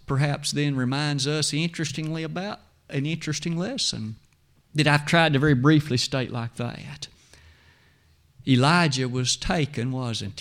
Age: 50-69